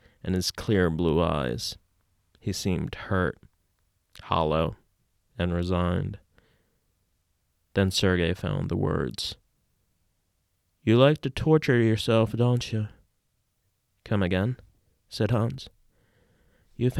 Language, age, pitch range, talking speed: English, 30-49, 90-115 Hz, 100 wpm